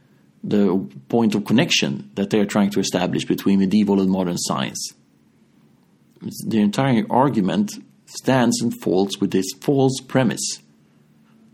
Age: 40-59